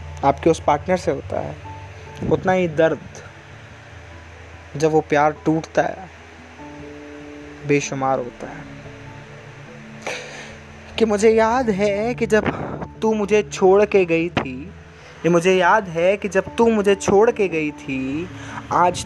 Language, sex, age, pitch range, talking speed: Hindi, male, 20-39, 145-190 Hz, 130 wpm